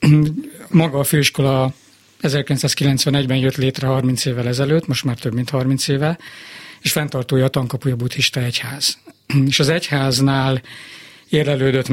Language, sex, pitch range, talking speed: Hungarian, male, 125-140 Hz, 125 wpm